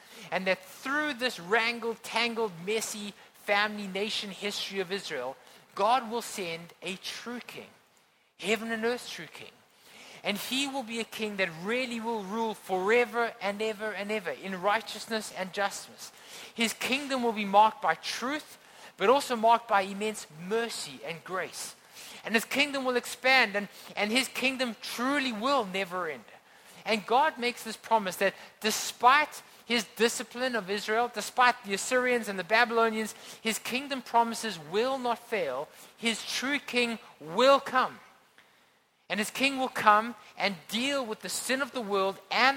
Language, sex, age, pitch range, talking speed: English, male, 30-49, 195-245 Hz, 160 wpm